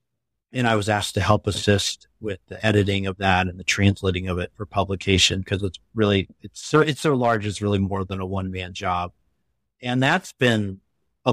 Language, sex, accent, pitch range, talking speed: English, male, American, 95-110 Hz, 205 wpm